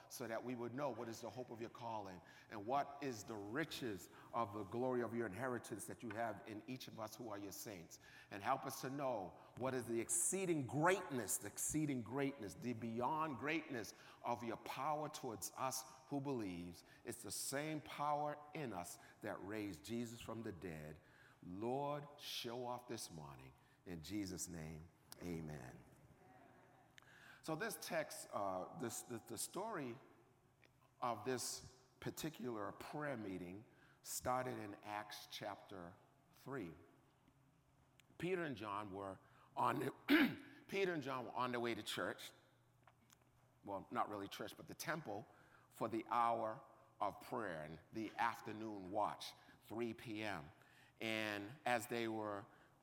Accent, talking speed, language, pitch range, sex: American, 150 wpm, English, 105-130 Hz, male